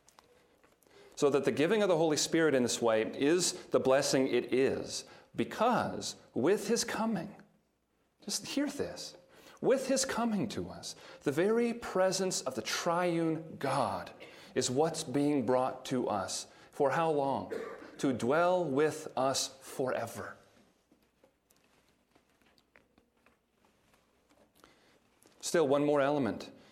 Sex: male